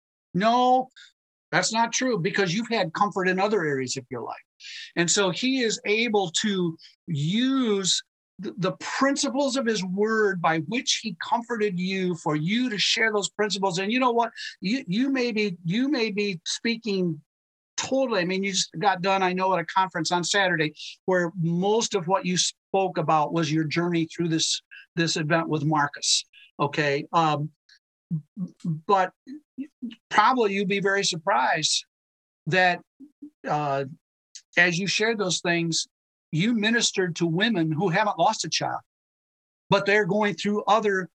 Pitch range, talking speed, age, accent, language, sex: 170-225 Hz, 155 wpm, 50-69, American, English, male